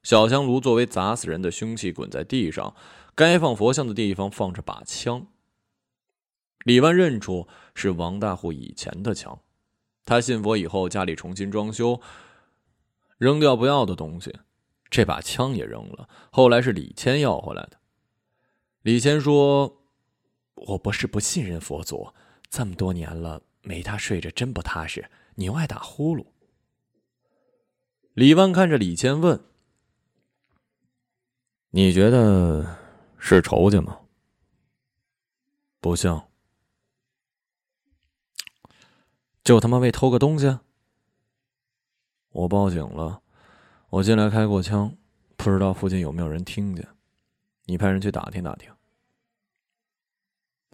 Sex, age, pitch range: male, 20-39, 95-125 Hz